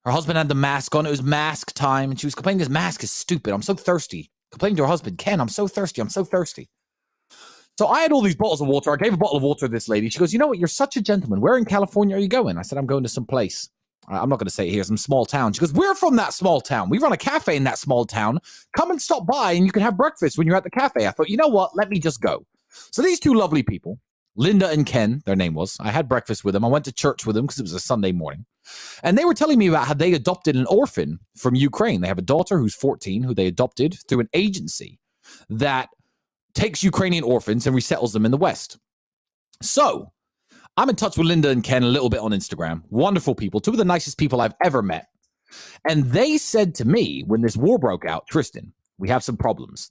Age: 30-49